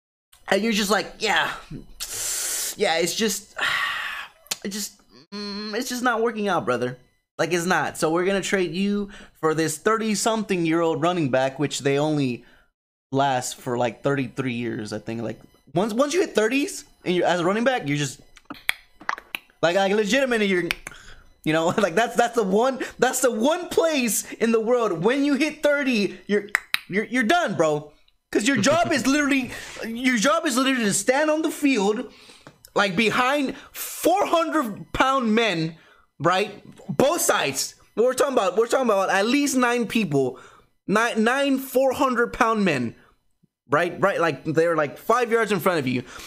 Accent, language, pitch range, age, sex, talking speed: American, English, 165-255 Hz, 20-39, male, 170 wpm